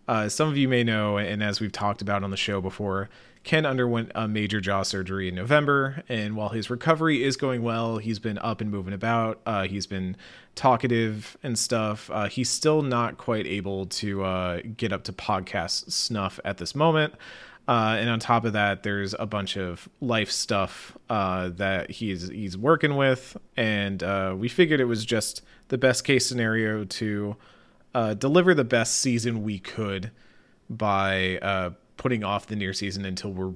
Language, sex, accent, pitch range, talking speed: English, male, American, 100-125 Hz, 185 wpm